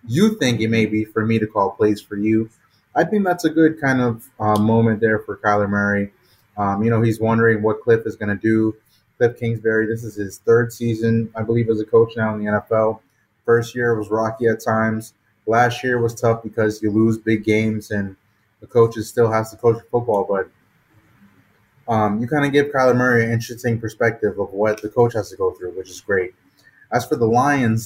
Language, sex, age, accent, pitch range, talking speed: English, male, 20-39, American, 110-150 Hz, 220 wpm